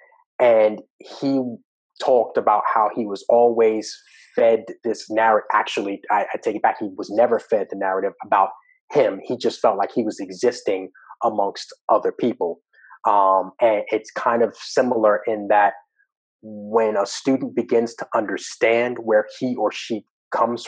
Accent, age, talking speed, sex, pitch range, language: American, 30-49, 155 wpm, male, 105-130 Hz, English